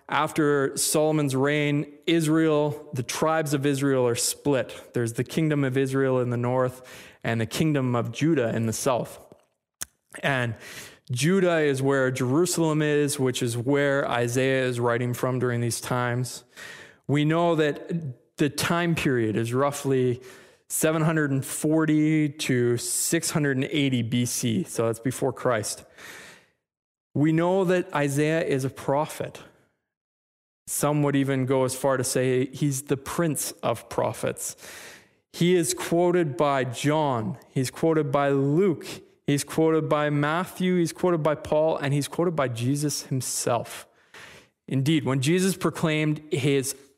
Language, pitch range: English, 125-155 Hz